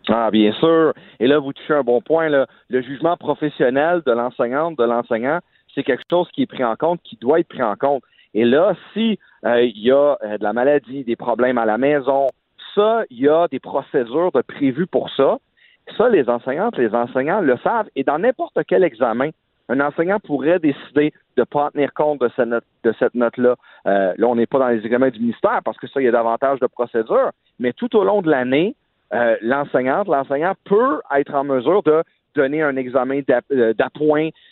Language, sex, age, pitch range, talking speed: French, male, 40-59, 125-170 Hz, 215 wpm